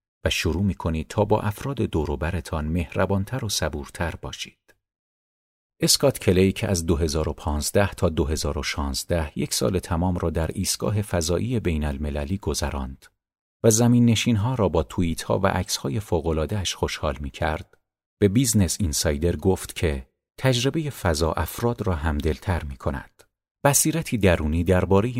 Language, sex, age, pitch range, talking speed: Persian, male, 50-69, 75-105 Hz, 125 wpm